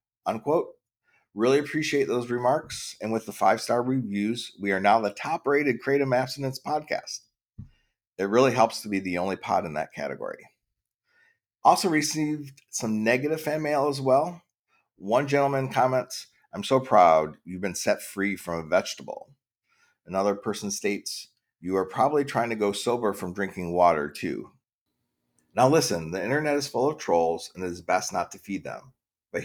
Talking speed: 165 wpm